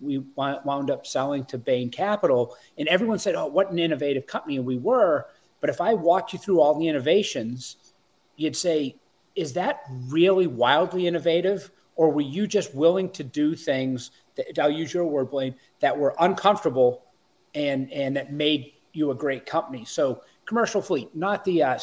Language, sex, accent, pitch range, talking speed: English, male, American, 140-175 Hz, 180 wpm